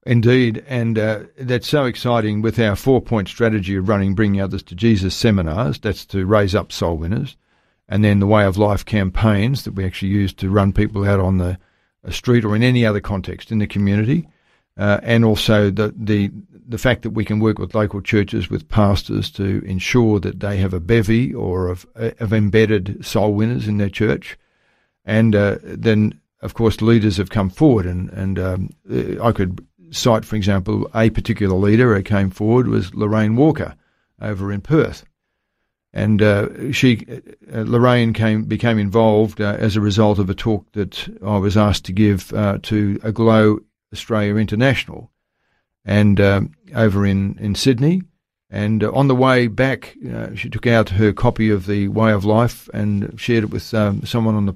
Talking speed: 185 wpm